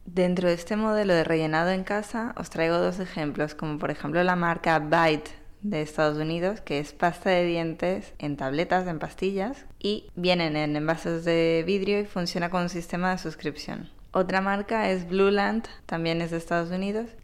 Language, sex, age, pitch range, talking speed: Spanish, female, 20-39, 160-195 Hz, 180 wpm